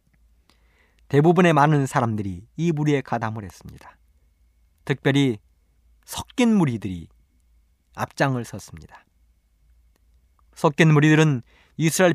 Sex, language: male, Korean